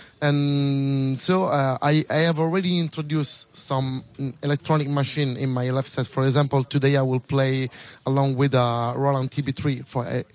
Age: 20-39